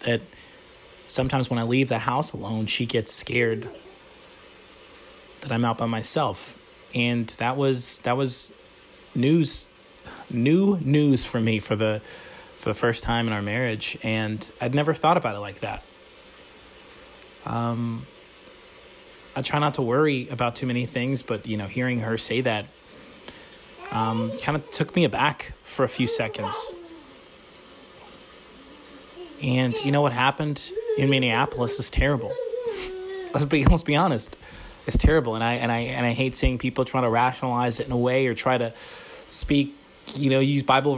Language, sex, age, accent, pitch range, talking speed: English, male, 30-49, American, 120-150 Hz, 165 wpm